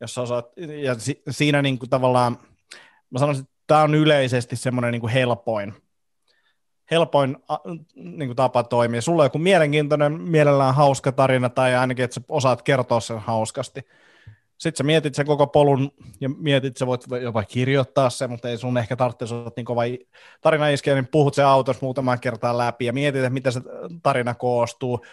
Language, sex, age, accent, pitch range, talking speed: Finnish, male, 30-49, native, 120-140 Hz, 160 wpm